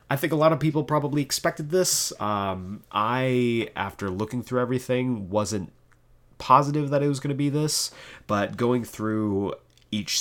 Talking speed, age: 165 wpm, 30-49